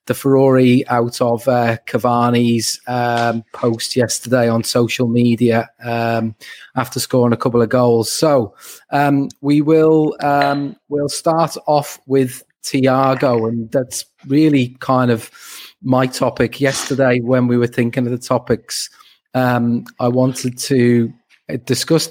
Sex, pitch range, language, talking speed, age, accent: male, 120-130 Hz, English, 135 wpm, 30-49, British